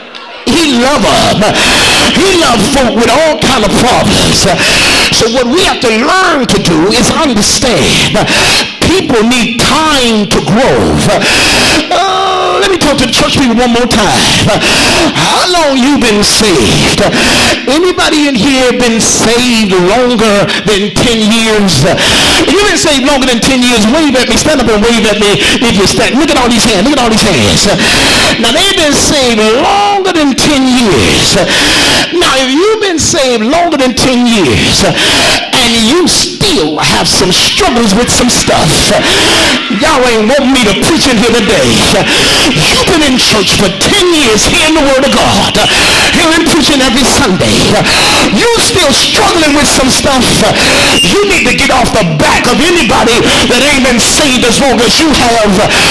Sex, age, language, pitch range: male, 50-69, English, 230-305 Hz